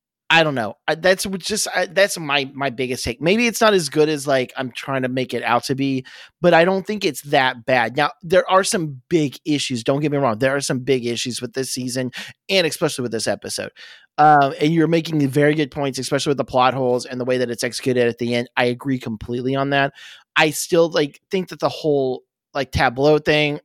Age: 30-49